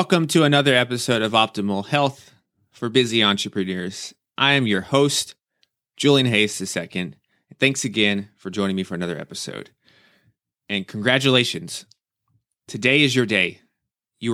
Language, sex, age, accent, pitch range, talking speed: English, male, 30-49, American, 105-140 Hz, 135 wpm